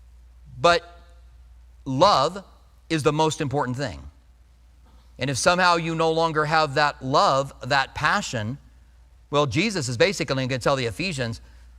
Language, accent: English, American